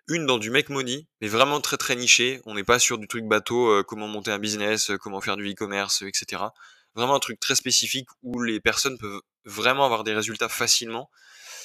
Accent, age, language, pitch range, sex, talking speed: French, 20-39, French, 105-125 Hz, male, 215 wpm